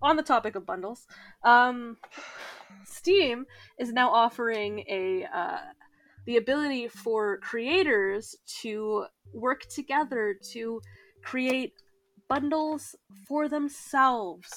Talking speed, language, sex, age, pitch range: 100 wpm, English, female, 20-39, 200-265 Hz